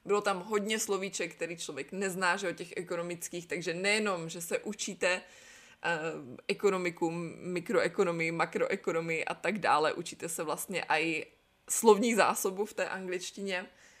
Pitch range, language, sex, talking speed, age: 170-210 Hz, Czech, female, 135 wpm, 20-39